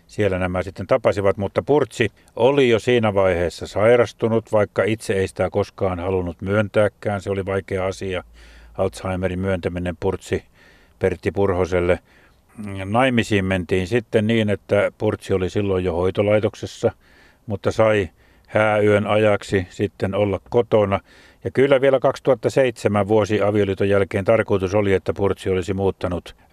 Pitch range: 90-105 Hz